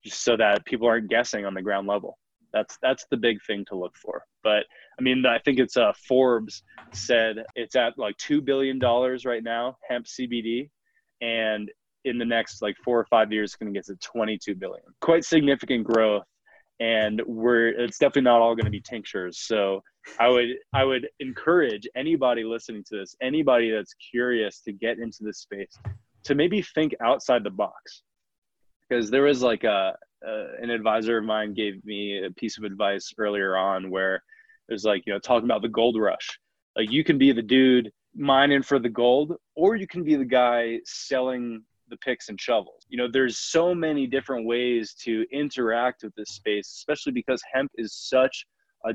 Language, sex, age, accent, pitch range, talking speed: English, male, 20-39, American, 110-130 Hz, 190 wpm